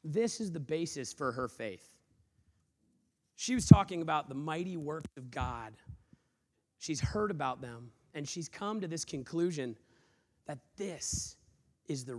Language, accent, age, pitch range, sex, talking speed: English, American, 30-49, 130-175 Hz, male, 150 wpm